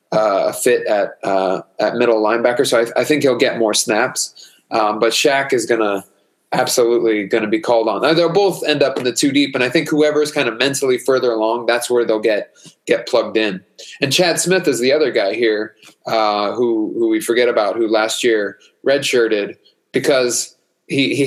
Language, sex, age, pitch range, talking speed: English, male, 20-39, 115-150 Hz, 210 wpm